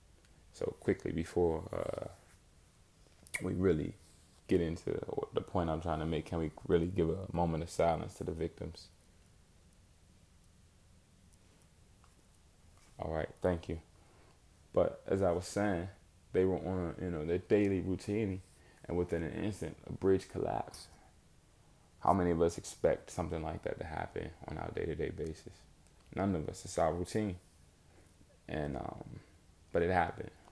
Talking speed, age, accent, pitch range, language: 145 wpm, 20-39, American, 80-90 Hz, English